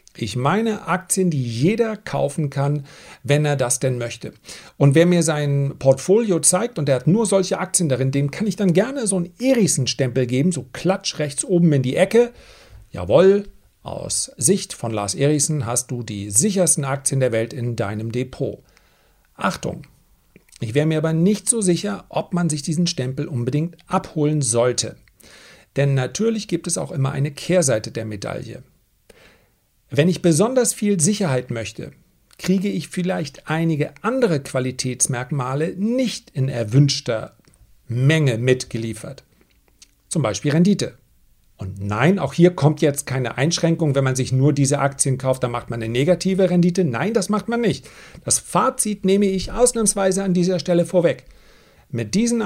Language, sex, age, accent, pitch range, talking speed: German, male, 40-59, German, 130-185 Hz, 160 wpm